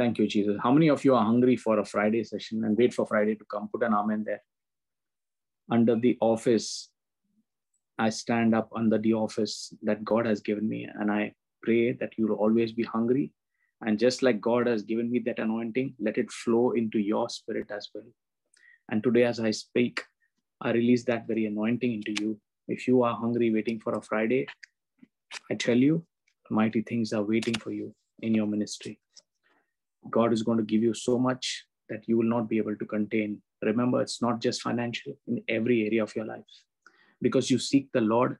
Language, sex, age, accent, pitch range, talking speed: English, male, 20-39, Indian, 110-125 Hz, 200 wpm